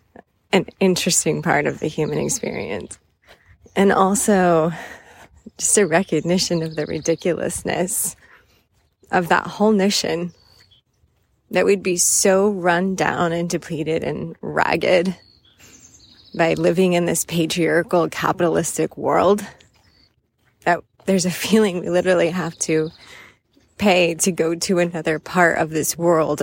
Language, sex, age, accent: English, female, 20-39, American